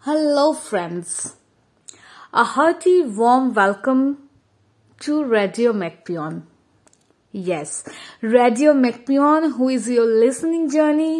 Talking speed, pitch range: 90 wpm, 215-290 Hz